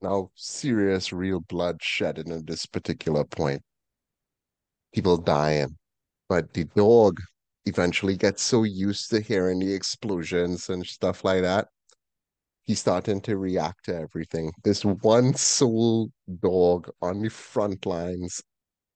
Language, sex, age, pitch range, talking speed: English, male, 30-49, 95-130 Hz, 125 wpm